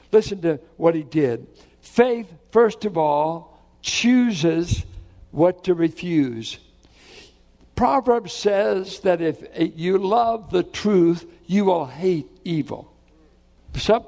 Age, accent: 60-79, American